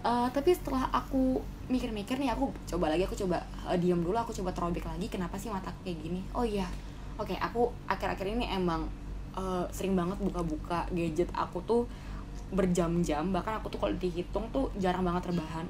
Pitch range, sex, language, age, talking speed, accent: 180-225 Hz, female, Indonesian, 20-39, 185 wpm, native